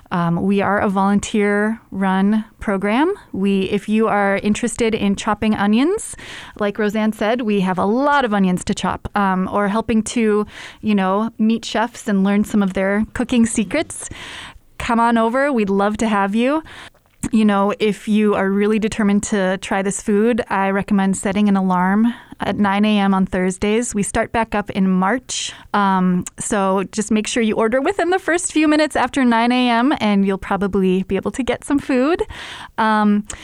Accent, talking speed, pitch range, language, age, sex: American, 180 wpm, 195-235 Hz, English, 20-39, female